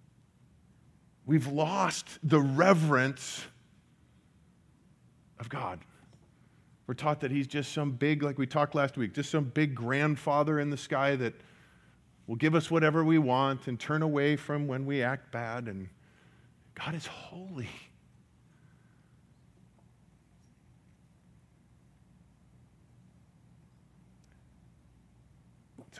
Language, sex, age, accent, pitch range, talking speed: English, male, 40-59, American, 125-170 Hz, 105 wpm